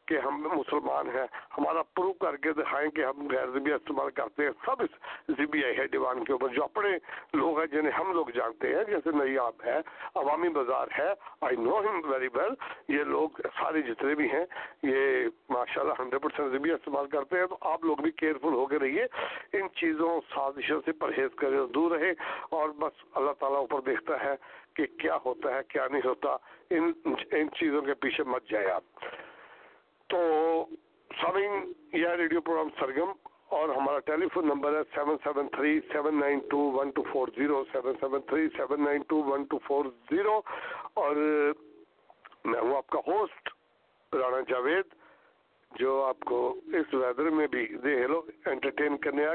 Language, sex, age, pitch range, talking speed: English, male, 60-79, 145-190 Hz, 125 wpm